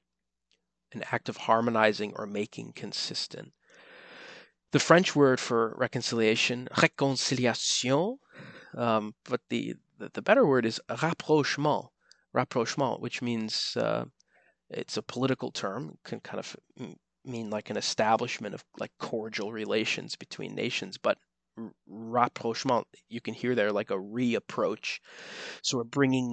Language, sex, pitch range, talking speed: English, male, 110-130 Hz, 125 wpm